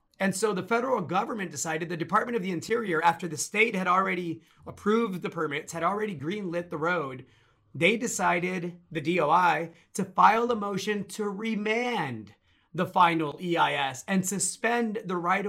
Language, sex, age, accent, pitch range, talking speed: English, male, 30-49, American, 160-210 Hz, 160 wpm